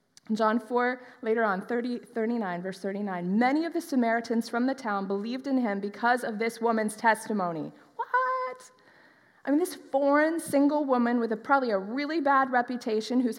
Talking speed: 170 wpm